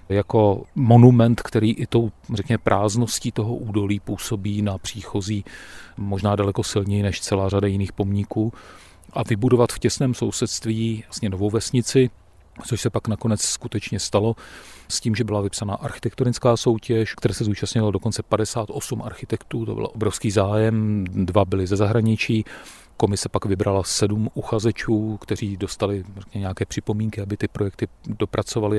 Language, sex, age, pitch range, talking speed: Czech, male, 40-59, 100-115 Hz, 145 wpm